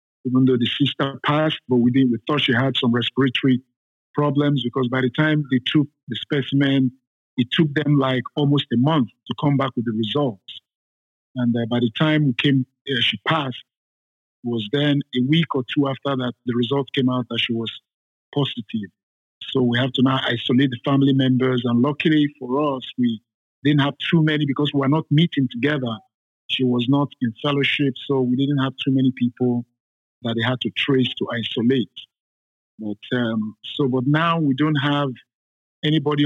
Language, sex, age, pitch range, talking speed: English, male, 50-69, 120-140 Hz, 190 wpm